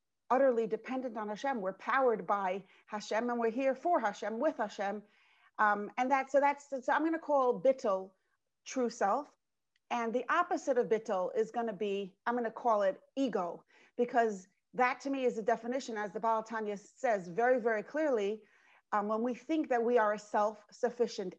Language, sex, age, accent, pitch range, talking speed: English, female, 40-59, American, 210-255 Hz, 180 wpm